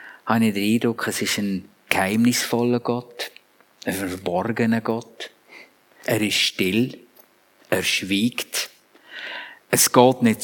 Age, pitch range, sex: 50-69, 105-130 Hz, male